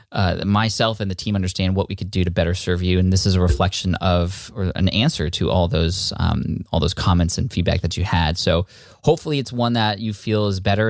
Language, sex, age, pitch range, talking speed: English, male, 20-39, 95-115 Hz, 240 wpm